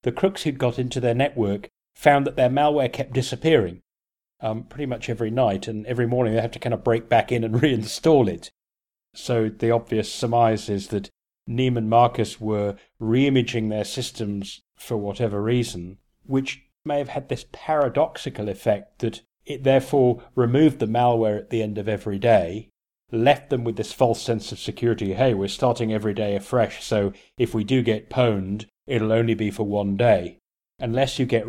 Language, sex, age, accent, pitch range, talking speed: English, male, 40-59, British, 110-130 Hz, 180 wpm